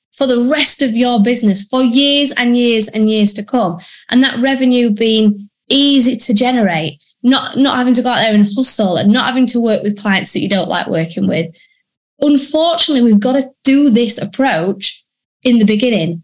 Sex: female